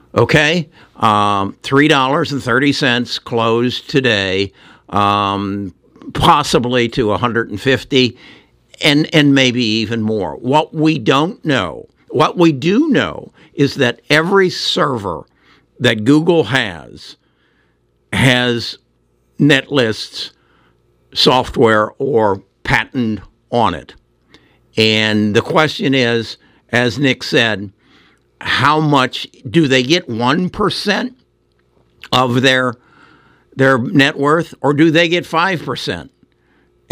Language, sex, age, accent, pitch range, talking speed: English, male, 60-79, American, 105-140 Hz, 95 wpm